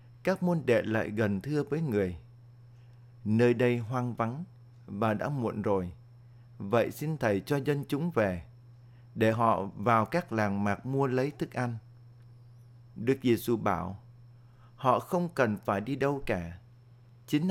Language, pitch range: Vietnamese, 115-135 Hz